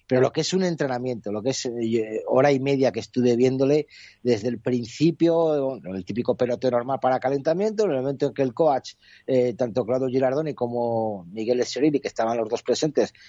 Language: Spanish